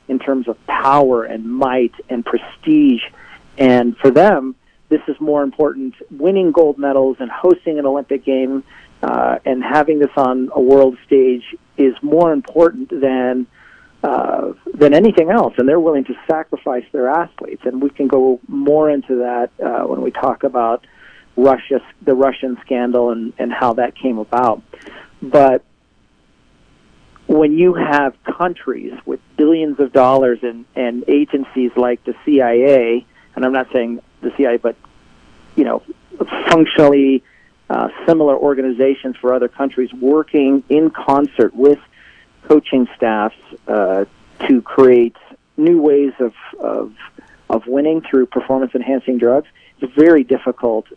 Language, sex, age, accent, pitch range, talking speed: English, male, 40-59, American, 125-150 Hz, 140 wpm